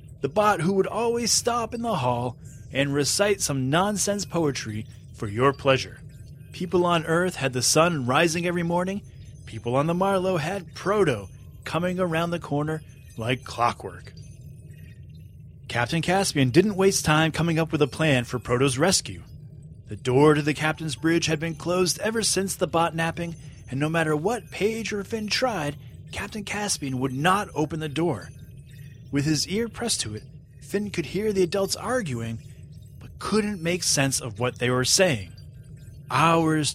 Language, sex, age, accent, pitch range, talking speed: English, male, 30-49, American, 130-185 Hz, 165 wpm